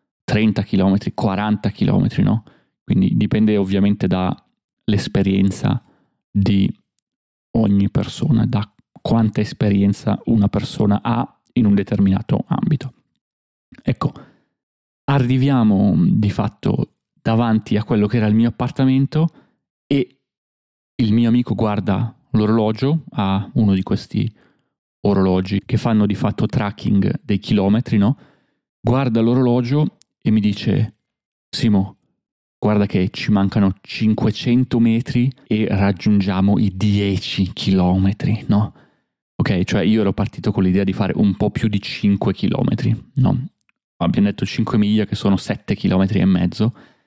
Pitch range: 100-115 Hz